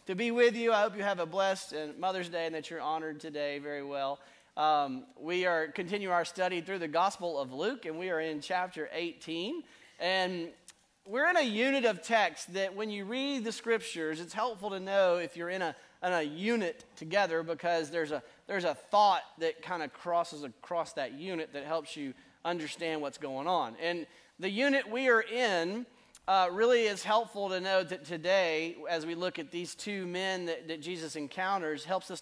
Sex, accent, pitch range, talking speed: male, American, 170-225 Hz, 200 wpm